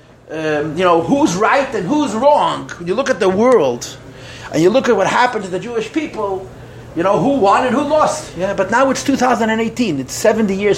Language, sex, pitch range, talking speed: English, male, 145-225 Hz, 210 wpm